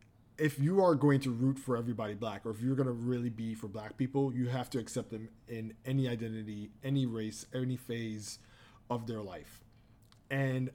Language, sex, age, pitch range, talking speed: English, male, 20-39, 110-130 Hz, 195 wpm